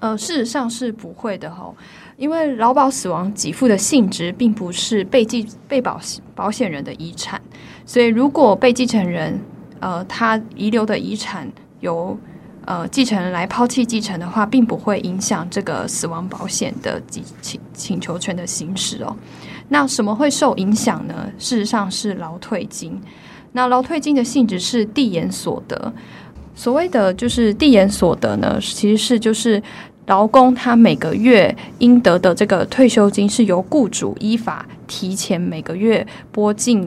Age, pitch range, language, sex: 10-29, 190-245 Hz, Chinese, female